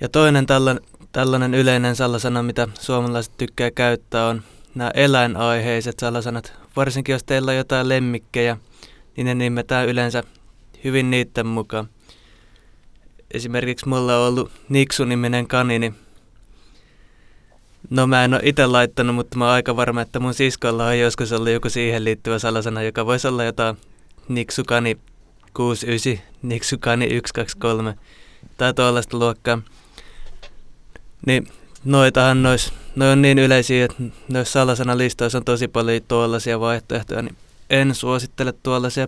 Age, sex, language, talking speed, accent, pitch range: 20-39, male, Finnish, 125 wpm, native, 115-130 Hz